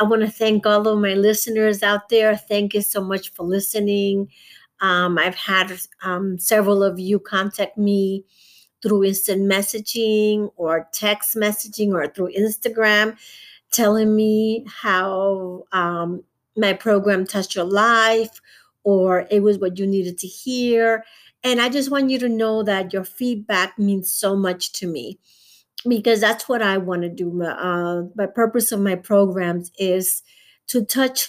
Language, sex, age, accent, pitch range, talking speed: English, female, 50-69, American, 185-220 Hz, 160 wpm